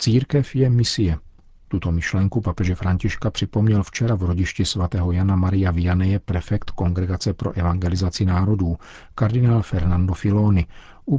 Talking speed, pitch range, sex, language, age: 130 wpm, 90-105 Hz, male, Czech, 40-59